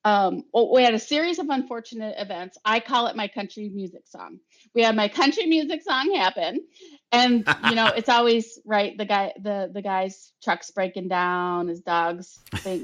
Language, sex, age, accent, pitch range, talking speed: English, female, 30-49, American, 200-265 Hz, 190 wpm